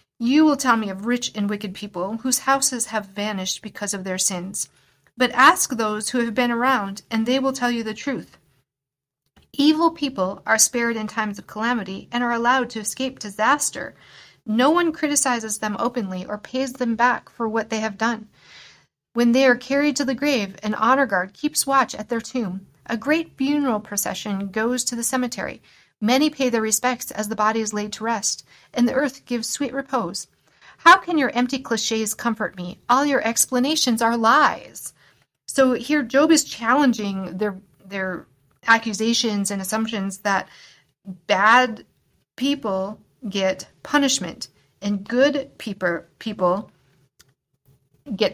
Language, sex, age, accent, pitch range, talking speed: English, female, 40-59, American, 200-260 Hz, 165 wpm